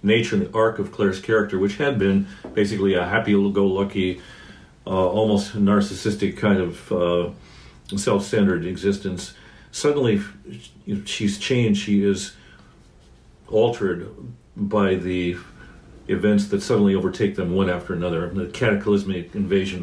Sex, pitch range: male, 90-100 Hz